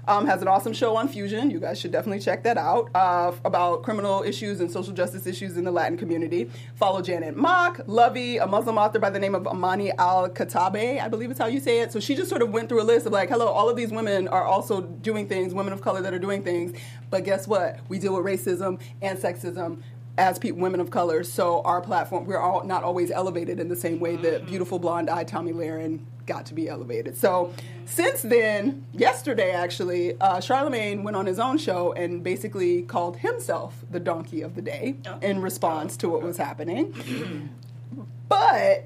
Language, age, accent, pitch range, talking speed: English, 30-49, American, 170-230 Hz, 210 wpm